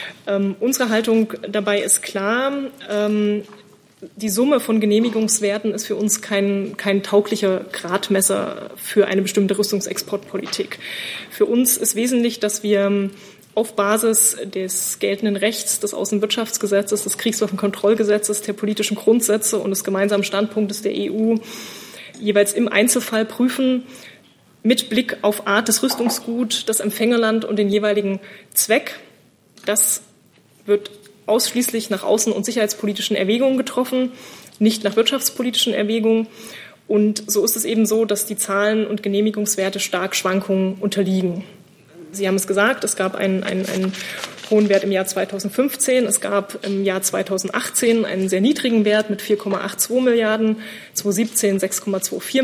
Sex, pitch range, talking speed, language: female, 200-225 Hz, 135 wpm, German